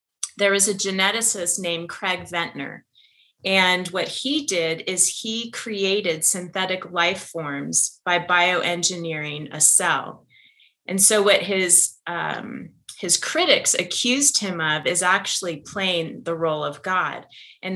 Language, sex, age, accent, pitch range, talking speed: English, female, 30-49, American, 170-200 Hz, 130 wpm